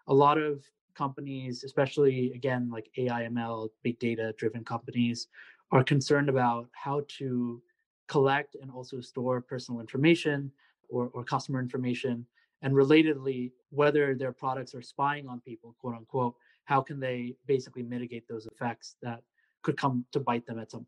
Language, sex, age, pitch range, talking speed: English, male, 20-39, 120-145 Hz, 150 wpm